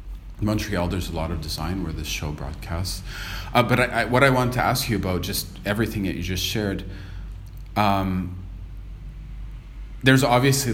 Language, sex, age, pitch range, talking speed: English, male, 30-49, 85-105 Hz, 170 wpm